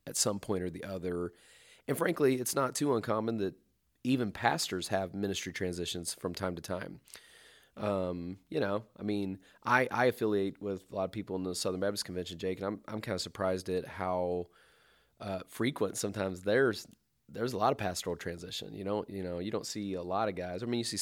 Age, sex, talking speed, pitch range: 30-49, male, 210 wpm, 90-105 Hz